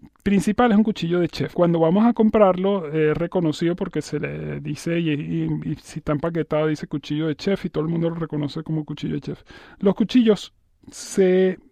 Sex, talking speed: male, 205 wpm